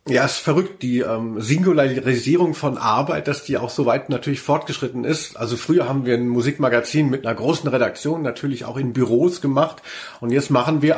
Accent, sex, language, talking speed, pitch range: German, male, German, 195 wpm, 115-140 Hz